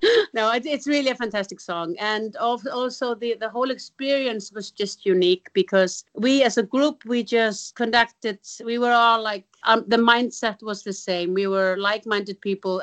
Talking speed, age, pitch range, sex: 175 wpm, 50-69, 185-240 Hz, female